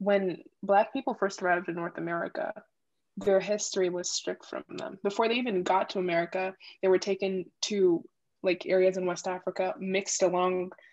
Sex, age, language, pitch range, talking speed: female, 20-39, English, 185-200 Hz, 170 wpm